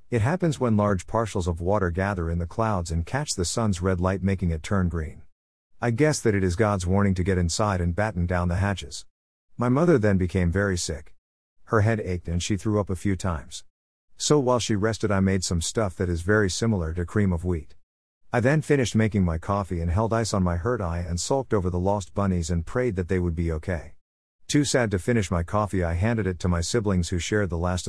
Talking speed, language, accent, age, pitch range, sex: 235 wpm, English, American, 50-69, 85-110 Hz, male